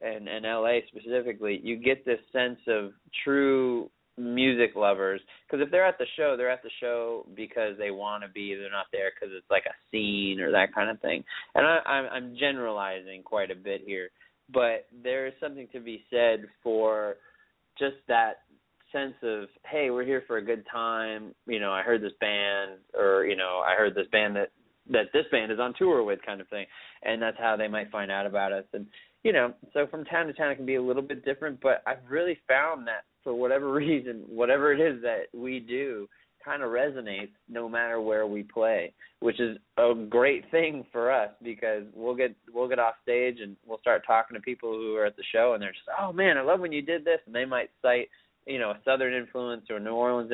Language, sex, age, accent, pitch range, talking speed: English, male, 30-49, American, 110-130 Hz, 225 wpm